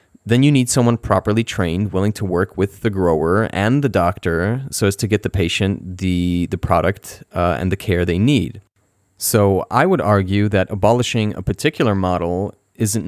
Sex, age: male, 30-49